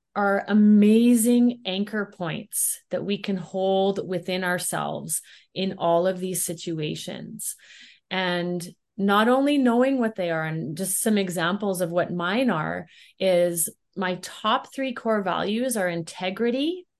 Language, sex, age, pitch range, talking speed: English, female, 30-49, 170-210 Hz, 135 wpm